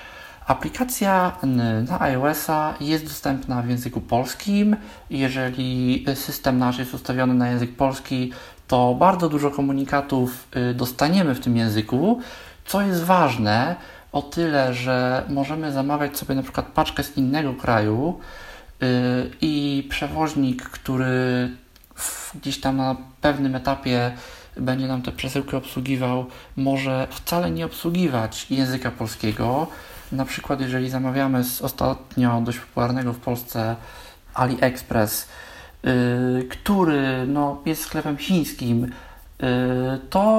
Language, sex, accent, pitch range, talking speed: Polish, male, native, 125-150 Hz, 110 wpm